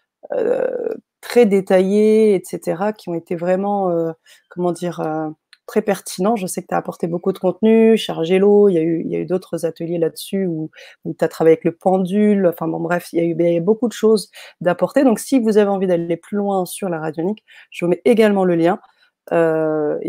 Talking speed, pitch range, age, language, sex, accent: 215 wpm, 170-210 Hz, 30-49, French, female, French